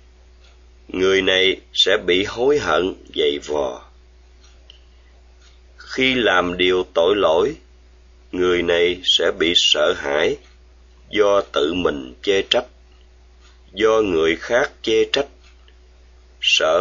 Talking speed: 105 wpm